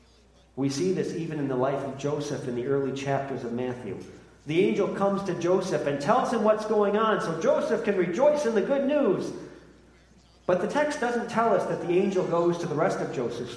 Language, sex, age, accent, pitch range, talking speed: English, male, 40-59, American, 135-180 Hz, 215 wpm